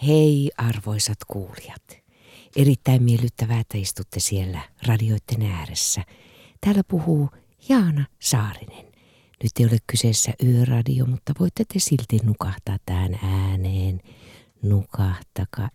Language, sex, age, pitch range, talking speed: Finnish, female, 60-79, 115-175 Hz, 105 wpm